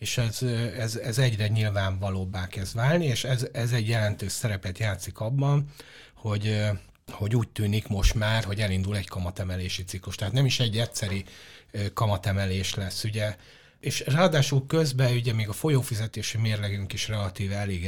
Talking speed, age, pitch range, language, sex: 155 wpm, 30-49, 100-120 Hz, Hungarian, male